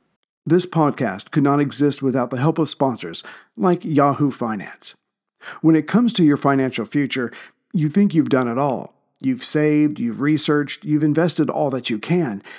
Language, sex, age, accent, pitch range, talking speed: English, male, 50-69, American, 140-165 Hz, 170 wpm